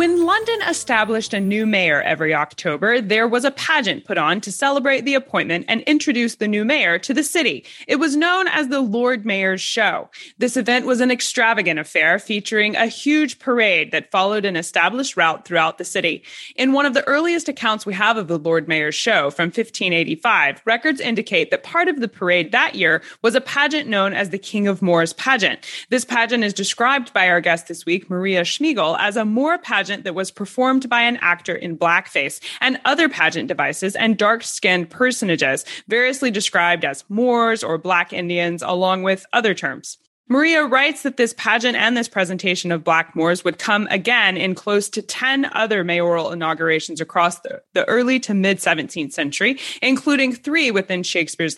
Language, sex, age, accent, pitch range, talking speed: English, female, 20-39, American, 180-255 Hz, 185 wpm